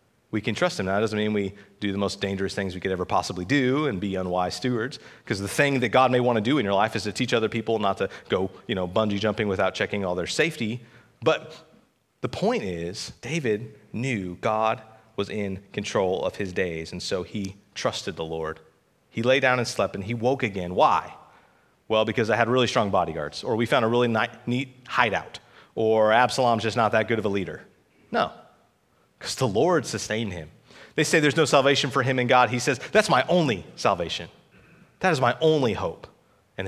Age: 30-49